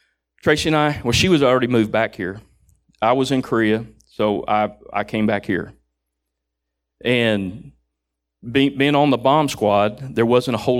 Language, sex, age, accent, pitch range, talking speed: English, male, 40-59, American, 105-160 Hz, 165 wpm